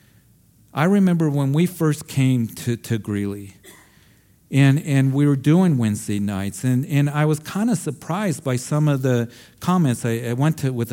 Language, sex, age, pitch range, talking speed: English, male, 50-69, 115-150 Hz, 180 wpm